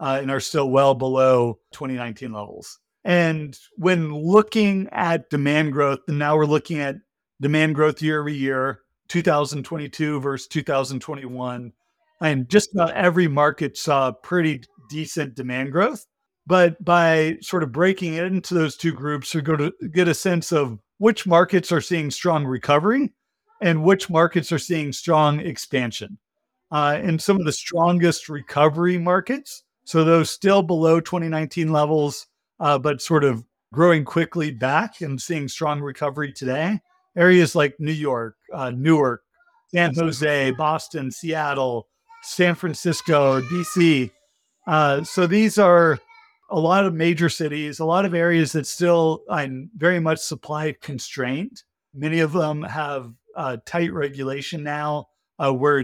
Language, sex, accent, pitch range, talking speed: English, male, American, 140-175 Hz, 145 wpm